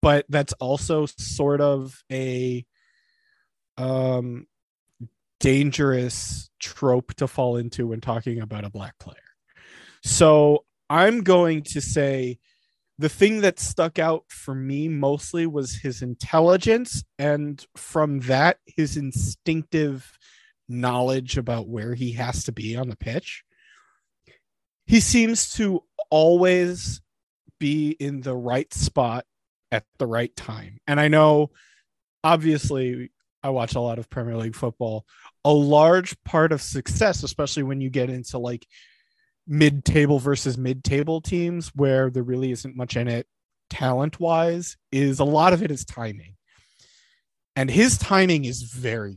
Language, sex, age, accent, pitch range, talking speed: English, male, 30-49, American, 125-155 Hz, 135 wpm